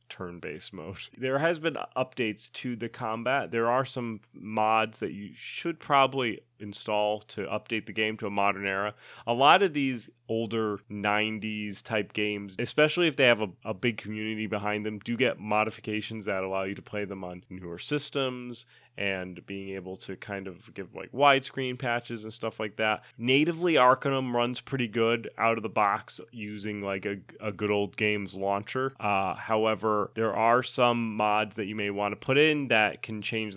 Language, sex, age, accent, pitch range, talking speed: English, male, 30-49, American, 105-125 Hz, 185 wpm